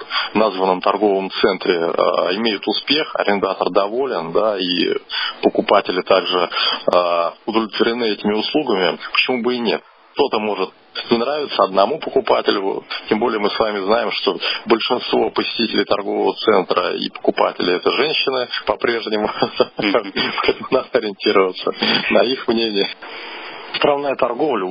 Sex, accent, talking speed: male, native, 120 wpm